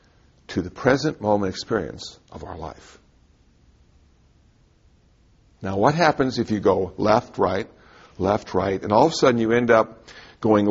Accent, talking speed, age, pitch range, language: American, 150 wpm, 60-79, 95-120 Hz, English